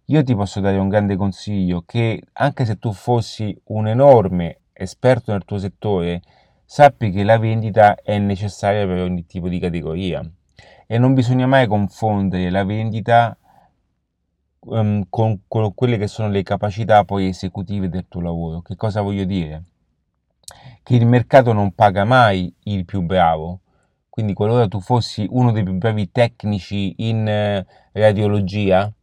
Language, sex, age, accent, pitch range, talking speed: Italian, male, 30-49, native, 95-115 Hz, 150 wpm